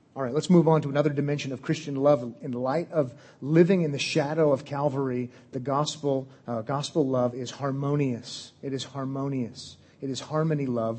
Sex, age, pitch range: male, 30-49, 125-150 Hz